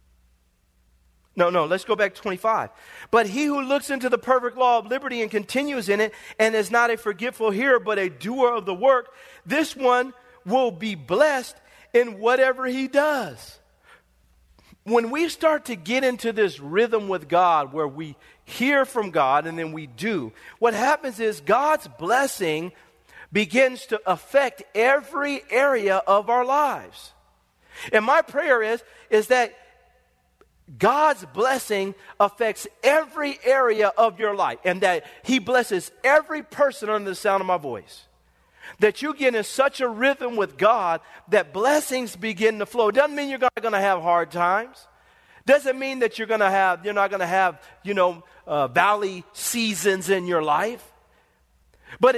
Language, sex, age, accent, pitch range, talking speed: English, male, 40-59, American, 190-260 Hz, 165 wpm